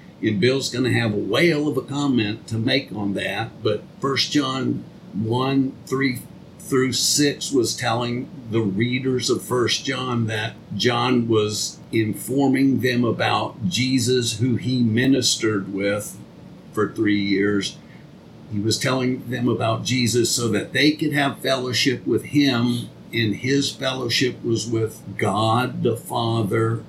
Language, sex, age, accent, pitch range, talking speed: English, male, 50-69, American, 110-135 Hz, 145 wpm